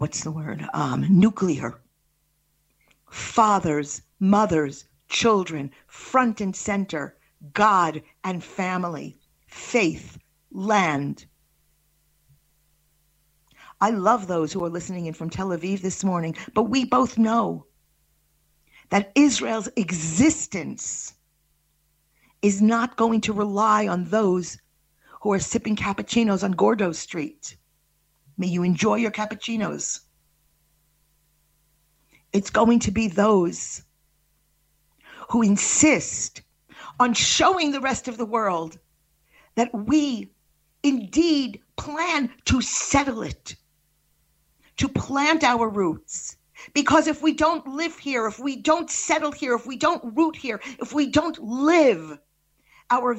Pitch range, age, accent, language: 155-250 Hz, 50-69, American, English